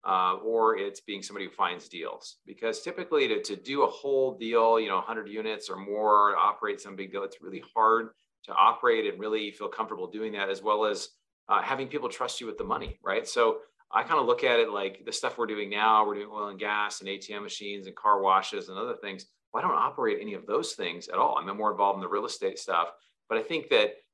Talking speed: 245 wpm